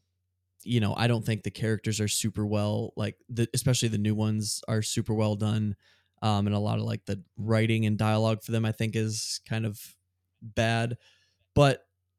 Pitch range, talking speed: 100-115 Hz, 190 wpm